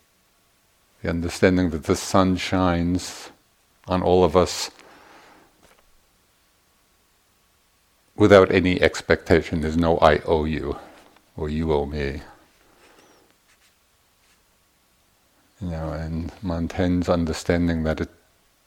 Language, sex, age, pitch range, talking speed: English, male, 50-69, 80-95 Hz, 90 wpm